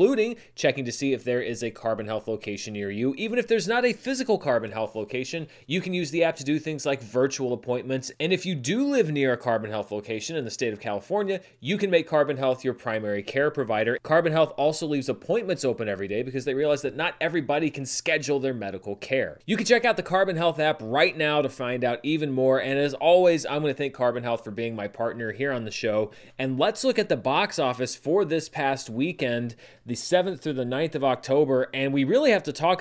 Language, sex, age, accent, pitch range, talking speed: English, male, 30-49, American, 130-185 Hz, 240 wpm